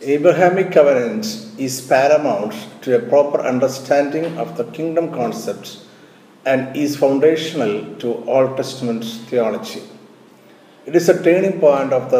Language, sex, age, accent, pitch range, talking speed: Malayalam, male, 50-69, native, 130-165 Hz, 130 wpm